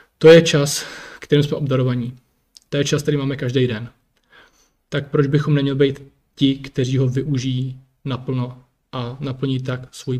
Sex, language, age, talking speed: male, Czech, 20-39, 160 wpm